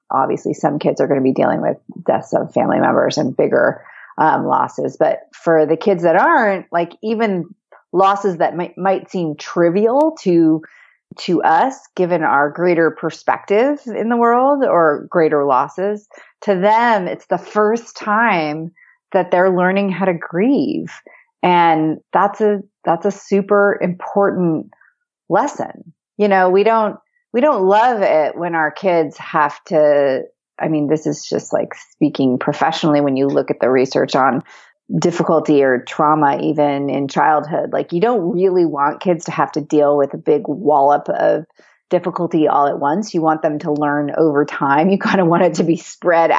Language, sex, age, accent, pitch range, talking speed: English, female, 30-49, American, 155-200 Hz, 170 wpm